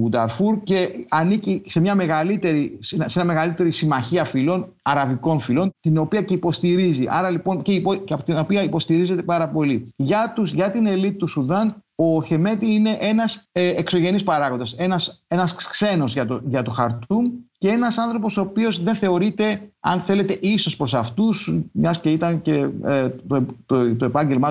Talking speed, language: 170 wpm, Greek